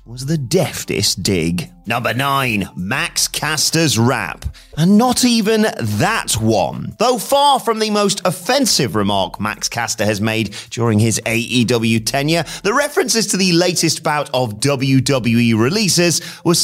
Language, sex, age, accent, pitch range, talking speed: English, male, 30-49, British, 120-190 Hz, 140 wpm